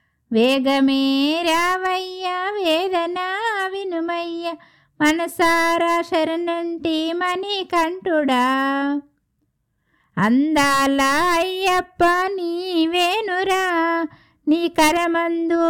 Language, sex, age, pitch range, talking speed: Telugu, female, 60-79, 285-355 Hz, 50 wpm